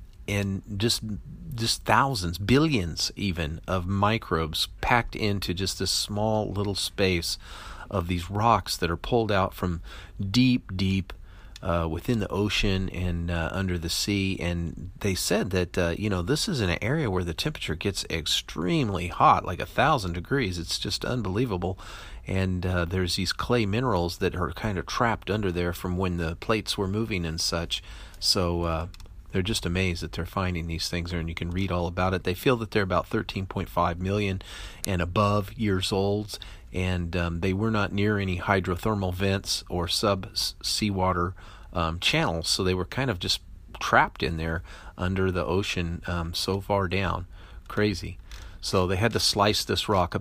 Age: 40-59